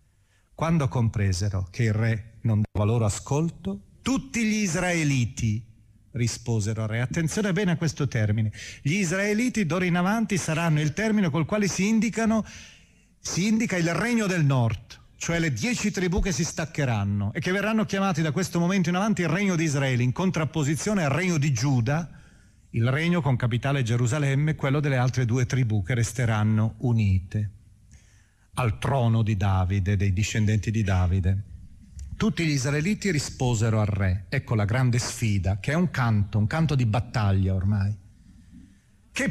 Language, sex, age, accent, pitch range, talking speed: Italian, male, 40-59, native, 105-165 Hz, 160 wpm